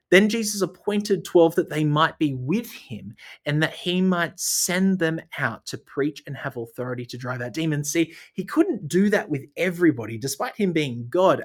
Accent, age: Australian, 30-49